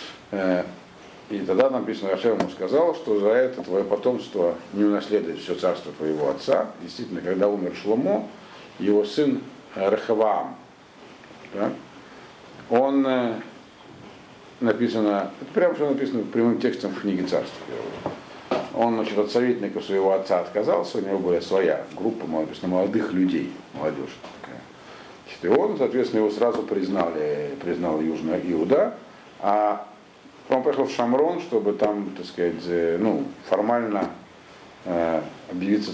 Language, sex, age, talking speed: Russian, male, 50-69, 120 wpm